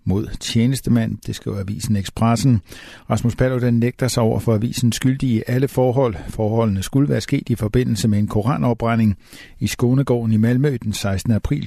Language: Danish